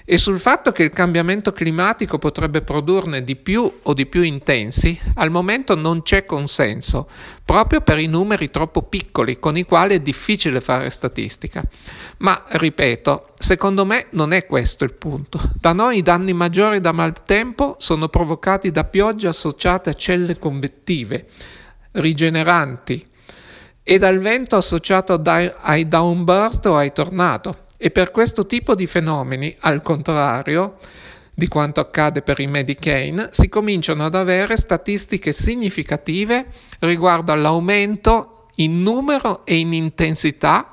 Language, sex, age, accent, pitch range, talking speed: Italian, male, 50-69, native, 155-195 Hz, 140 wpm